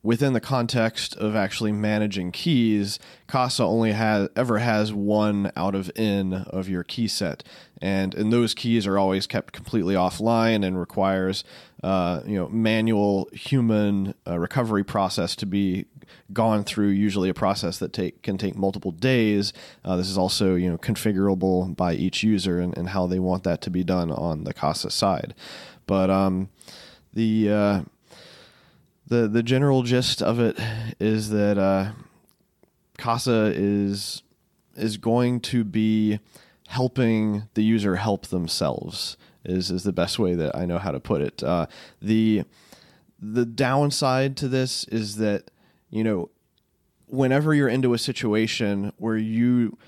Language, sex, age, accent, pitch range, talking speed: English, male, 30-49, American, 95-115 Hz, 155 wpm